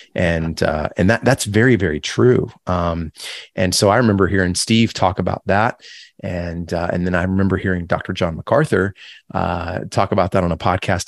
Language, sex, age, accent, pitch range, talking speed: English, male, 30-49, American, 90-105 Hz, 190 wpm